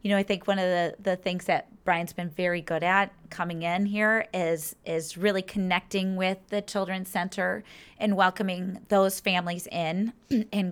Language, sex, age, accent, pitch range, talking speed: English, female, 30-49, American, 175-210 Hz, 180 wpm